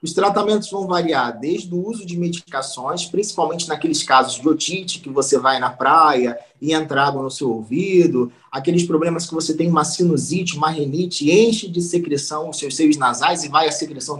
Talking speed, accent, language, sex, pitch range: 190 wpm, Brazilian, Portuguese, male, 150-190 Hz